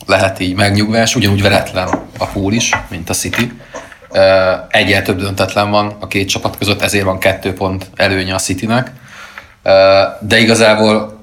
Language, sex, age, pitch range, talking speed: Hungarian, male, 30-49, 90-100 Hz, 150 wpm